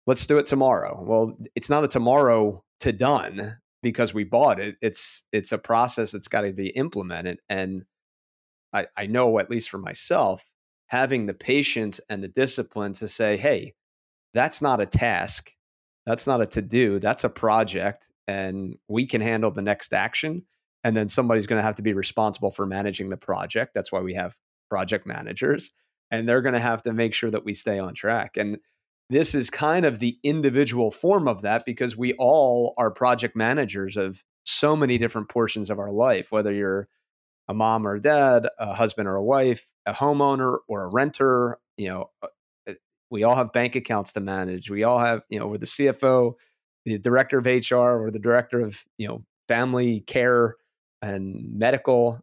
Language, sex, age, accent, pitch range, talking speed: English, male, 30-49, American, 100-125 Hz, 185 wpm